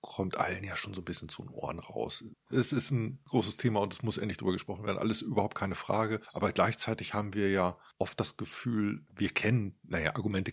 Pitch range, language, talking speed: 105-125 Hz, German, 220 wpm